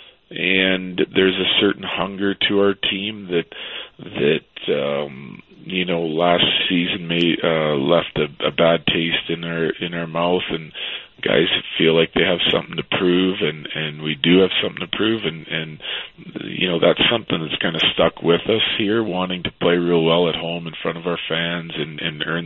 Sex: male